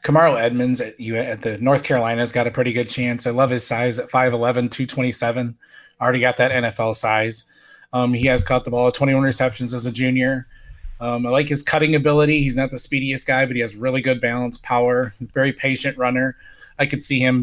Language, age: English, 20-39